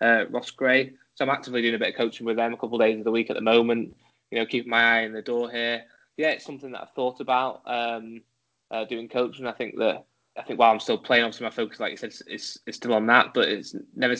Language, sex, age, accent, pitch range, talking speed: English, male, 10-29, British, 115-130 Hz, 280 wpm